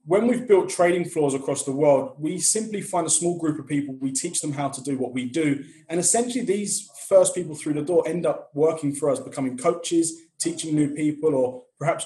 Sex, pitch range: male, 145-185 Hz